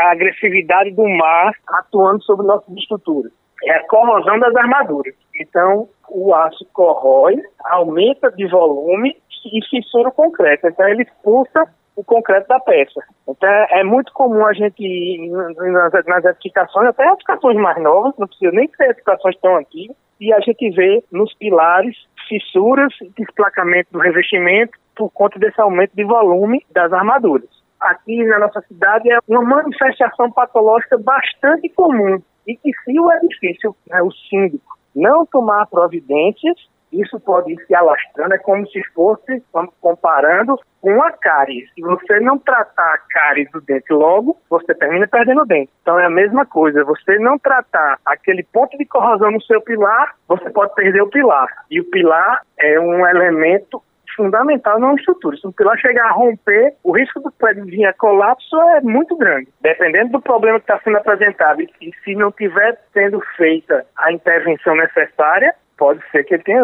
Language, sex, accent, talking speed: Portuguese, male, Brazilian, 165 wpm